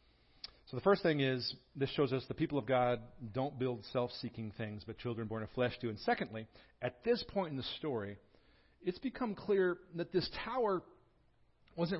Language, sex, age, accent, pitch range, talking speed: English, male, 40-59, American, 115-155 Hz, 185 wpm